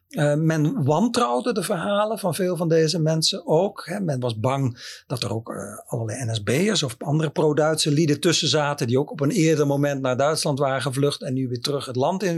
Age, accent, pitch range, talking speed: 50-69, Dutch, 130-170 Hz, 210 wpm